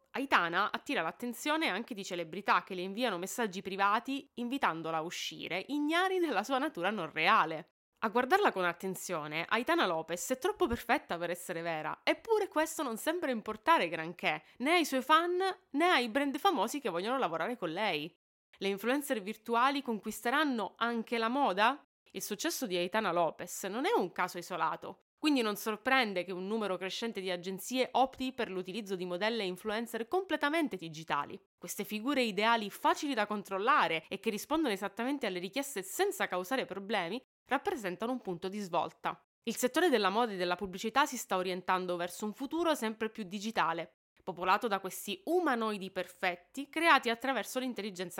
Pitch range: 190-270 Hz